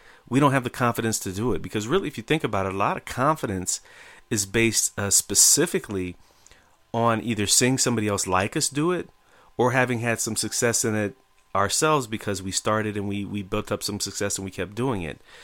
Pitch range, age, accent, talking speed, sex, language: 95-115 Hz, 30-49, American, 215 wpm, male, English